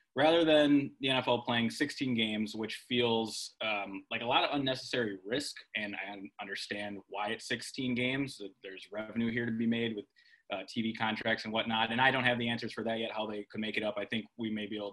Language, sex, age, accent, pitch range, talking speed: English, male, 20-39, American, 110-130 Hz, 225 wpm